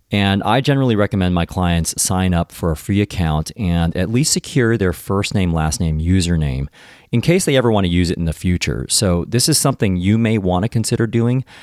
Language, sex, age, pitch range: English, male, 40-59, 85-110 Hz